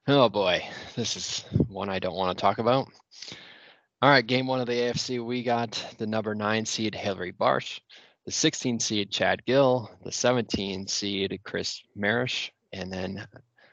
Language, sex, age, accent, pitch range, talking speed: English, male, 20-39, American, 95-120 Hz, 165 wpm